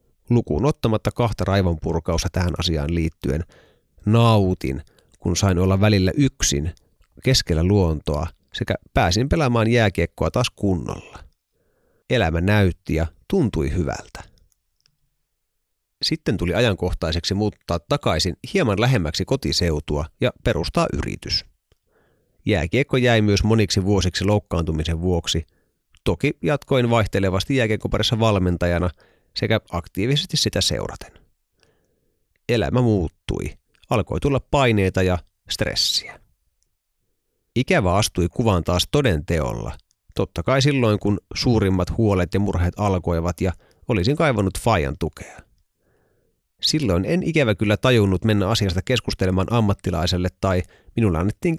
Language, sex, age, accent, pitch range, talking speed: Finnish, male, 30-49, native, 85-115 Hz, 105 wpm